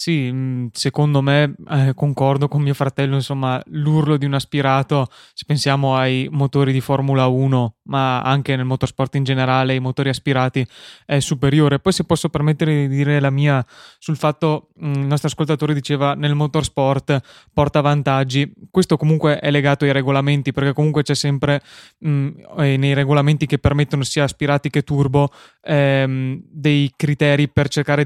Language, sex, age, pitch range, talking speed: Italian, male, 20-39, 135-145 Hz, 160 wpm